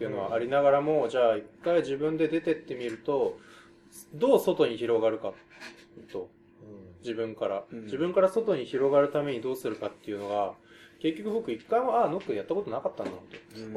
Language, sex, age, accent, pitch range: Japanese, male, 20-39, native, 110-165 Hz